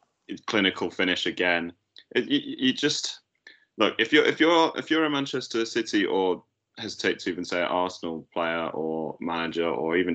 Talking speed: 165 wpm